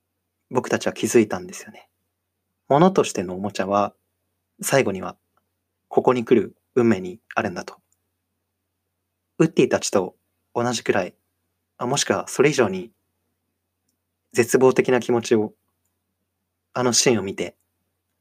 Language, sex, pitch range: Japanese, male, 90-105 Hz